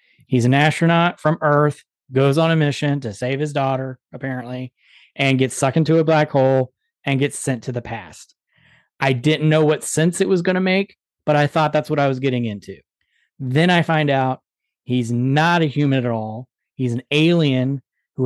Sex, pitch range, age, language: male, 135-155 Hz, 30-49, English